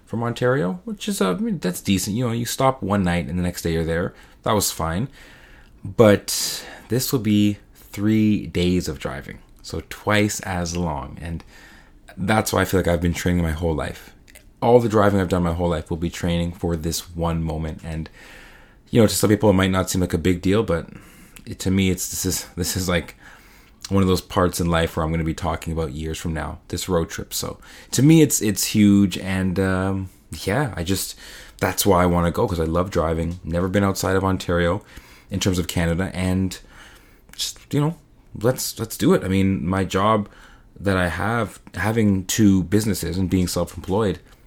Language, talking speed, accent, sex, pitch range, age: English, 215 wpm, American, male, 85-105 Hz, 20-39